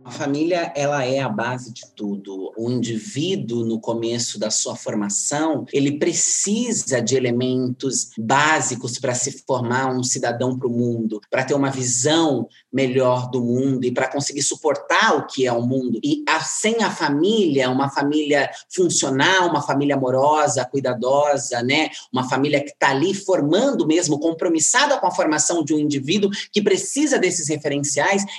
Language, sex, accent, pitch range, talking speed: Portuguese, male, Brazilian, 125-160 Hz, 155 wpm